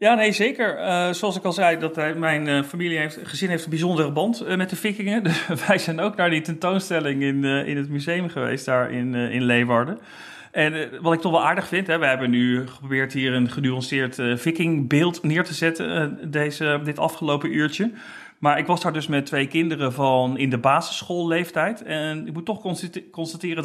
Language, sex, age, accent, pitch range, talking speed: Dutch, male, 40-59, Dutch, 145-185 Hz, 210 wpm